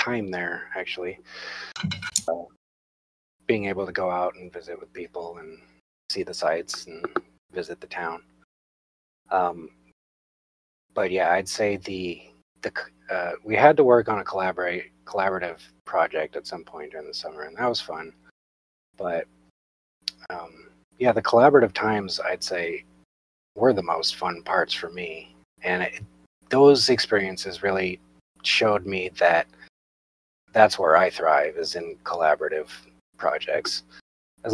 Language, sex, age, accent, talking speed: English, male, 30-49, American, 140 wpm